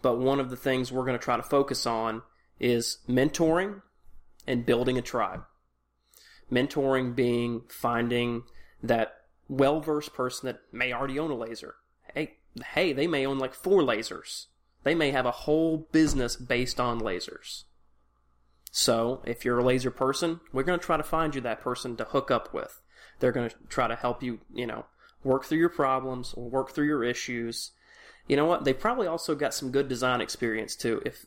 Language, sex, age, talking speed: English, male, 30-49, 185 wpm